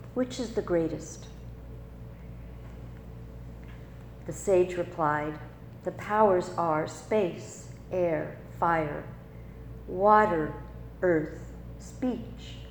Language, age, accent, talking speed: English, 50-69, American, 75 wpm